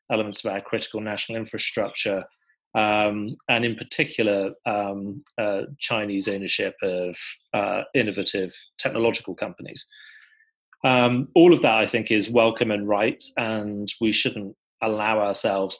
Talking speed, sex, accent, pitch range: 130 wpm, male, British, 105-130 Hz